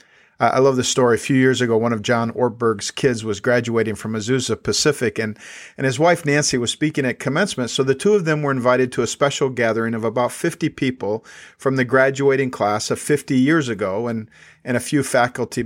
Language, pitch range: English, 115-140 Hz